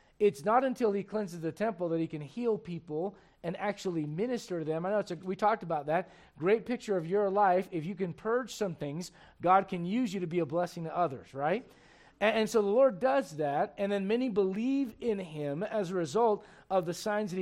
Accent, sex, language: American, male, English